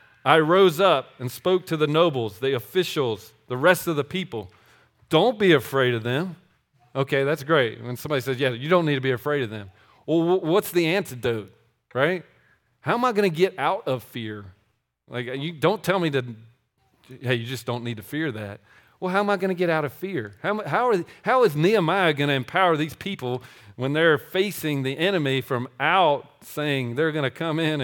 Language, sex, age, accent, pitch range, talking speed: English, male, 40-59, American, 125-165 Hz, 210 wpm